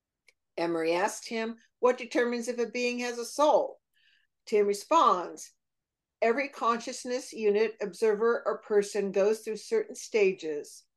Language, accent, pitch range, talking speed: English, American, 200-250 Hz, 125 wpm